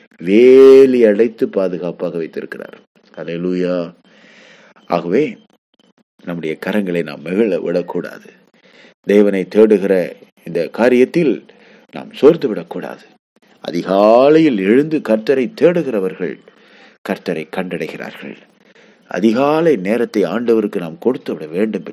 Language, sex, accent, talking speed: English, male, Indian, 70 wpm